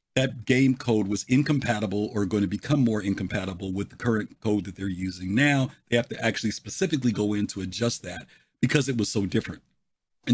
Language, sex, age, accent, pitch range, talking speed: English, male, 50-69, American, 105-130 Hz, 205 wpm